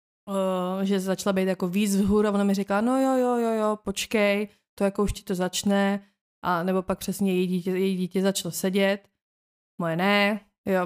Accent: native